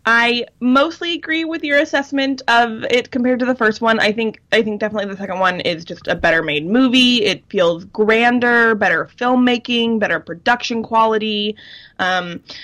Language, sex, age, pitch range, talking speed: English, female, 20-39, 185-240 Hz, 170 wpm